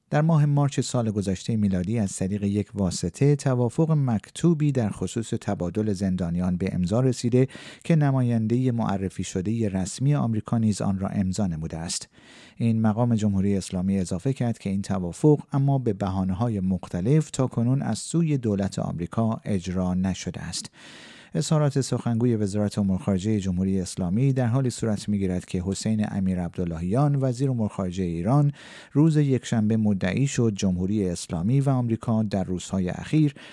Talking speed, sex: 150 wpm, male